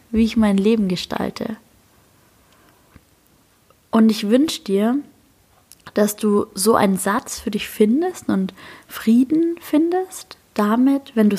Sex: female